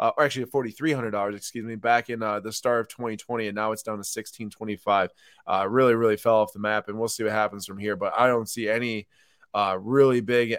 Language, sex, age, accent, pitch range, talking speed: English, male, 20-39, American, 110-140 Hz, 230 wpm